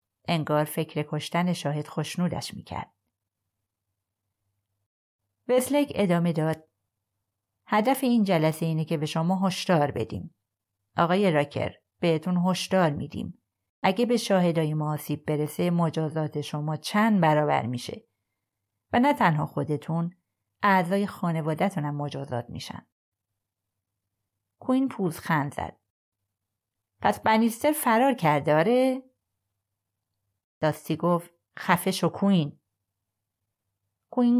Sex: female